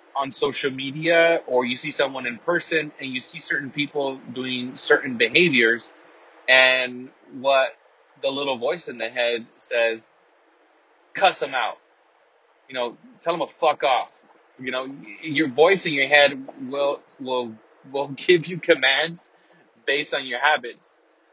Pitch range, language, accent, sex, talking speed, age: 125-150 Hz, English, American, male, 150 wpm, 30-49